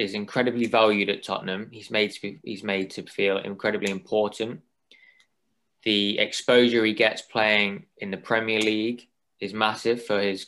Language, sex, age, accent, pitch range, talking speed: English, male, 20-39, British, 95-115 Hz, 145 wpm